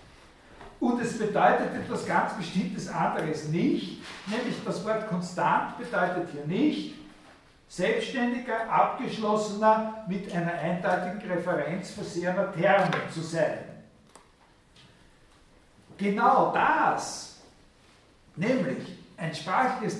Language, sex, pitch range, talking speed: German, male, 175-225 Hz, 90 wpm